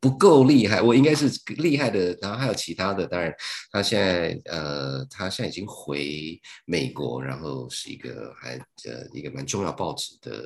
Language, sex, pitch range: Chinese, male, 70-115 Hz